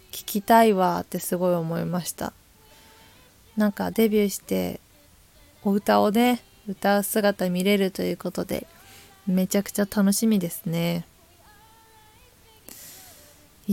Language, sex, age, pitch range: Japanese, female, 20-39, 170-215 Hz